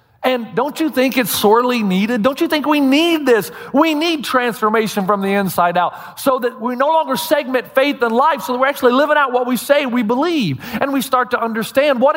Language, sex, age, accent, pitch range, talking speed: English, male, 40-59, American, 160-240 Hz, 225 wpm